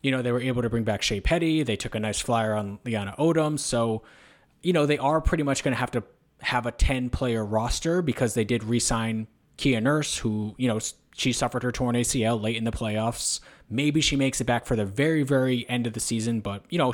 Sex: male